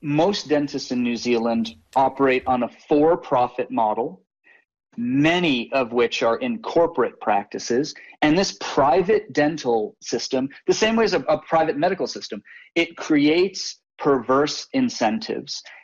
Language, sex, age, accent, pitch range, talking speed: English, male, 30-49, American, 125-180 Hz, 135 wpm